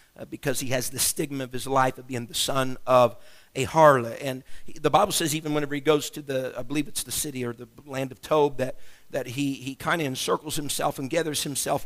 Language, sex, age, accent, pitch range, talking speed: English, male, 50-69, American, 135-160 Hz, 245 wpm